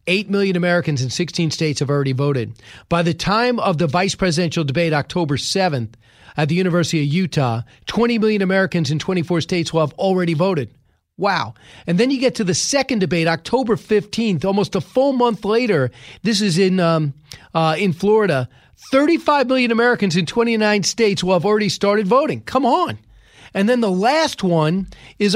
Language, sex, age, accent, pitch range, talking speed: English, male, 40-59, American, 160-215 Hz, 180 wpm